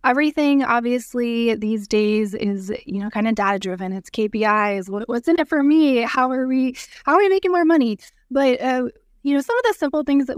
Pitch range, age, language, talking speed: 210-260 Hz, 20-39, English, 215 wpm